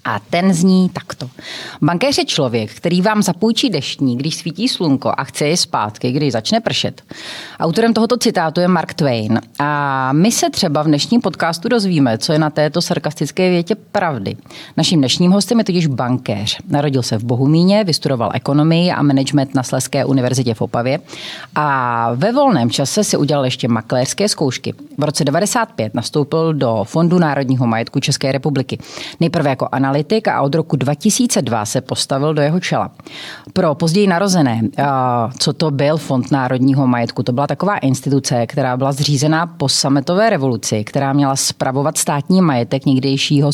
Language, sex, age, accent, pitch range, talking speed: Czech, female, 30-49, native, 130-170 Hz, 160 wpm